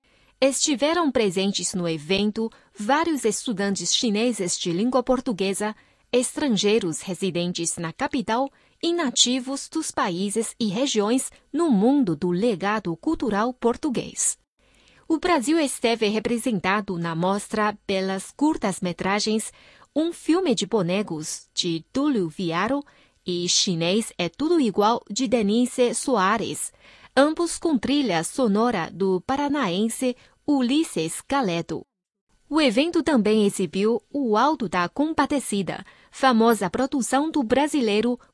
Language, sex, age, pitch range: Chinese, female, 20-39, 195-270 Hz